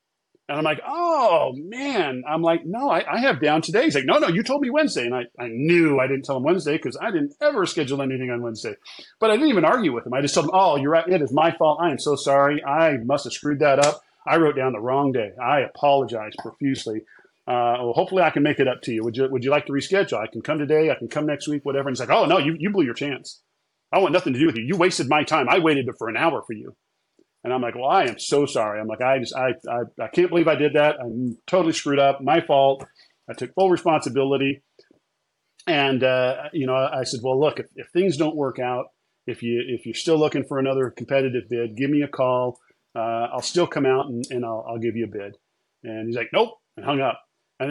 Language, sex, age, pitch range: English, male, 40-59, 125-160 Hz